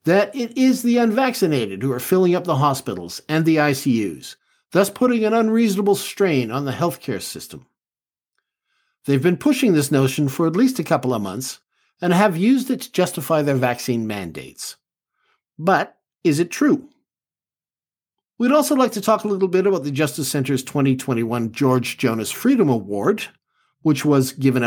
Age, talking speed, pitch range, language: 50-69, 165 wpm, 130-195 Hz, English